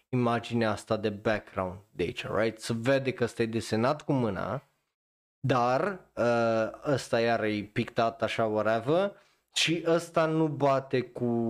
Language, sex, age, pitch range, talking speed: Romanian, male, 20-39, 110-130 Hz, 130 wpm